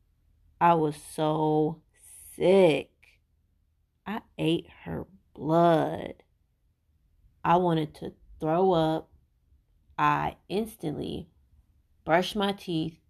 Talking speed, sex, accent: 80 wpm, female, American